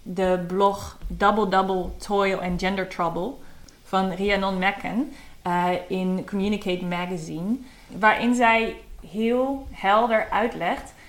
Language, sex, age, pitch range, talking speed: Dutch, female, 20-39, 180-210 Hz, 105 wpm